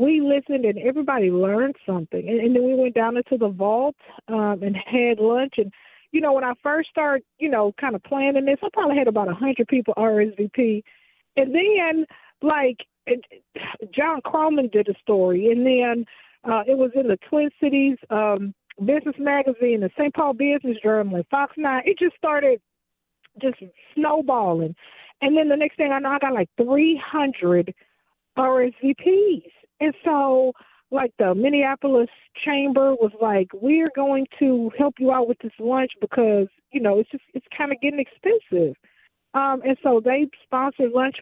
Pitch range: 215-280 Hz